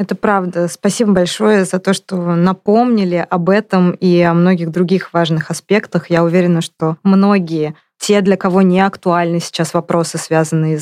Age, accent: 20-39, native